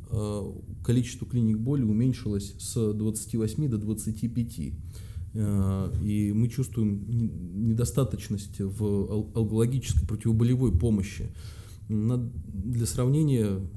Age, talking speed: 20-39, 80 wpm